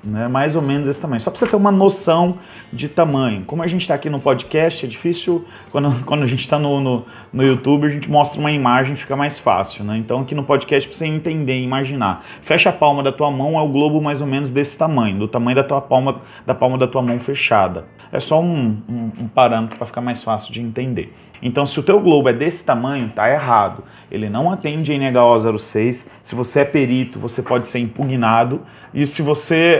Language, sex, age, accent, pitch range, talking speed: Portuguese, male, 30-49, Brazilian, 125-165 Hz, 225 wpm